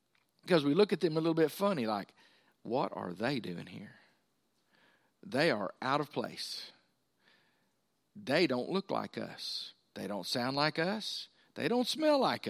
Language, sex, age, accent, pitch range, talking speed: English, male, 50-69, American, 130-170 Hz, 165 wpm